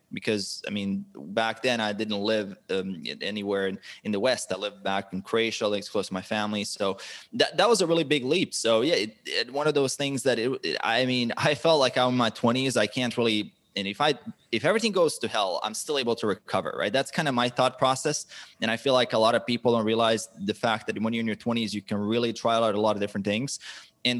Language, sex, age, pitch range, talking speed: English, male, 20-39, 110-140 Hz, 260 wpm